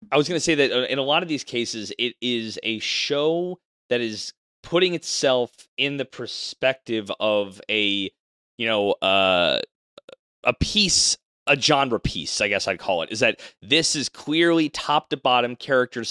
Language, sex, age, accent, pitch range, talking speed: English, male, 30-49, American, 110-140 Hz, 175 wpm